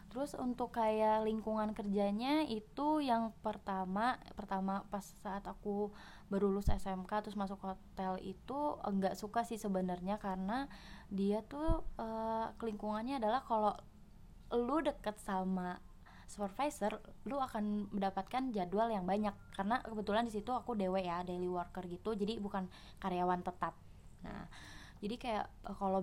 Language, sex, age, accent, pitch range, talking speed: Indonesian, female, 20-39, native, 185-220 Hz, 130 wpm